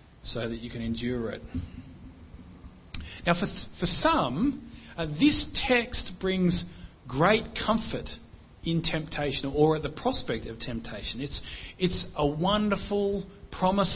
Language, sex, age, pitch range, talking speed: English, male, 40-59, 120-195 Hz, 130 wpm